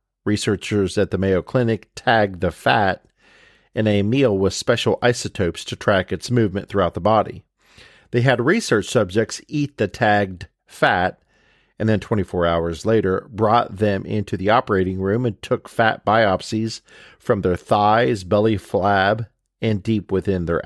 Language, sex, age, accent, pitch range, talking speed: English, male, 40-59, American, 95-115 Hz, 155 wpm